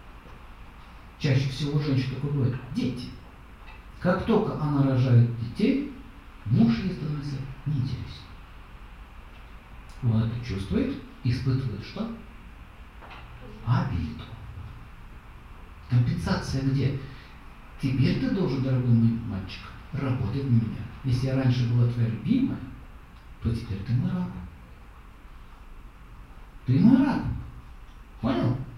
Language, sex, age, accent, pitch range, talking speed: Russian, male, 60-79, native, 115-145 Hz, 95 wpm